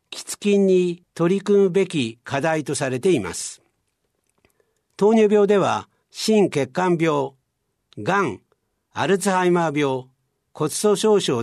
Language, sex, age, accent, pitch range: Japanese, male, 60-79, native, 140-185 Hz